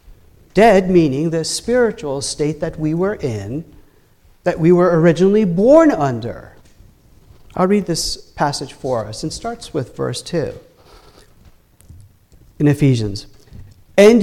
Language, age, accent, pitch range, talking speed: English, 50-69, American, 130-200 Hz, 120 wpm